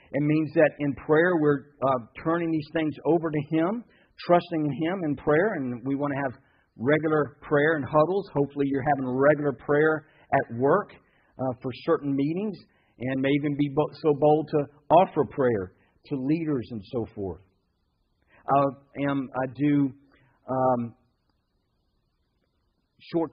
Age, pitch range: 50-69, 135-155 Hz